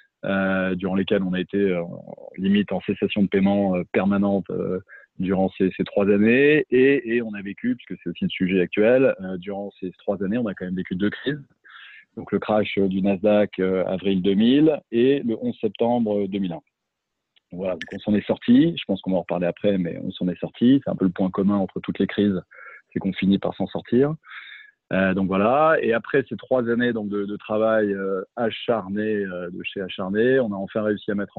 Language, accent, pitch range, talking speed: French, French, 95-115 Hz, 220 wpm